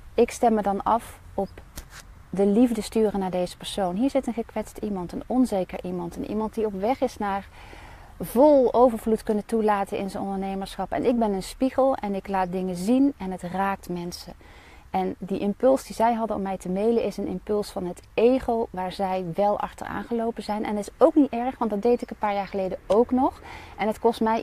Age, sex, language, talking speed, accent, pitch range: 30-49, female, Dutch, 220 wpm, Dutch, 195-235 Hz